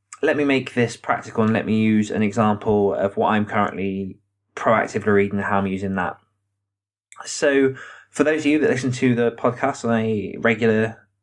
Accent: British